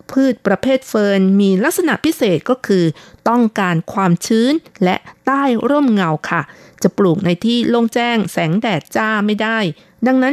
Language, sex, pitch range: Thai, female, 180-235 Hz